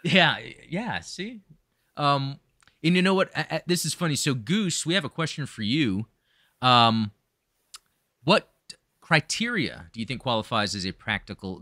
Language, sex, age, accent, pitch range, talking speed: English, male, 30-49, American, 105-155 Hz, 165 wpm